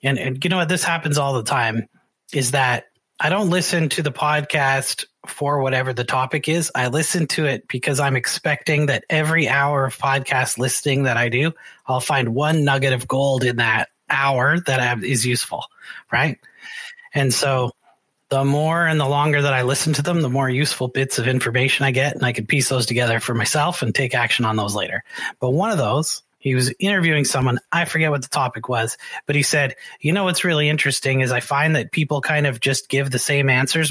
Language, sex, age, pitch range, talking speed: English, male, 30-49, 125-150 Hz, 210 wpm